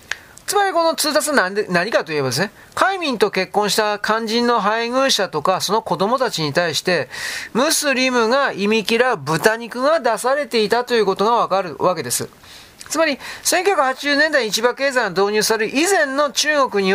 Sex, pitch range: male, 195-270 Hz